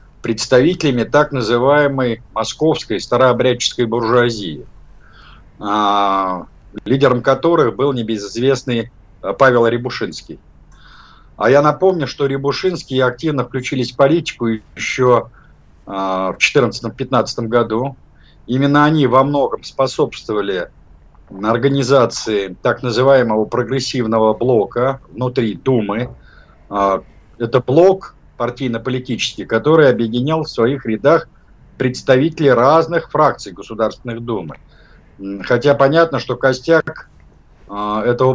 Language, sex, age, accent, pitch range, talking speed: Russian, male, 50-69, native, 115-140 Hz, 85 wpm